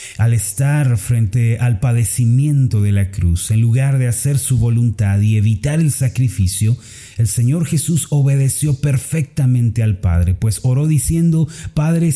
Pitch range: 105-135 Hz